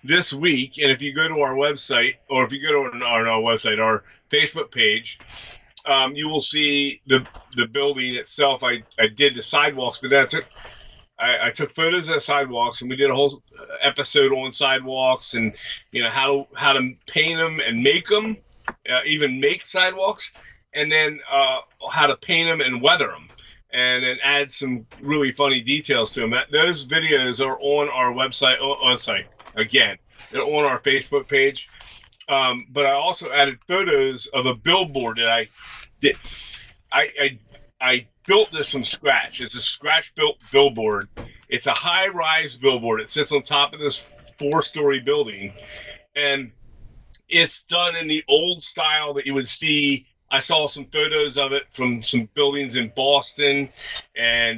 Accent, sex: American, male